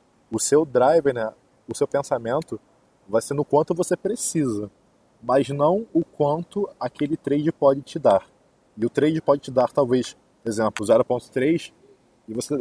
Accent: Brazilian